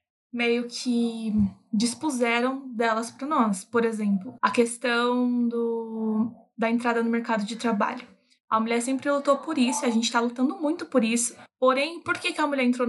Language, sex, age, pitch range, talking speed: Portuguese, female, 20-39, 230-265 Hz, 165 wpm